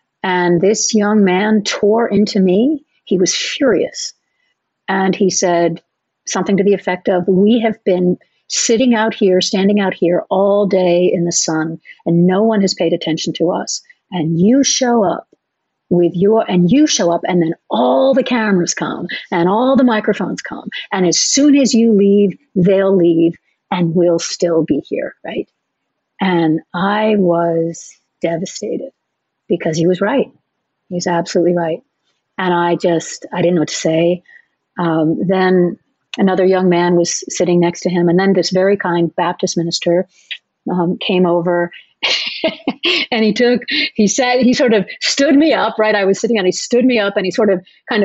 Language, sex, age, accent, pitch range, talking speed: English, female, 50-69, American, 175-230 Hz, 175 wpm